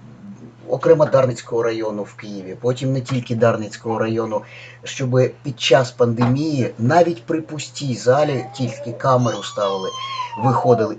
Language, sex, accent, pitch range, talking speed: Ukrainian, male, native, 120-140 Hz, 120 wpm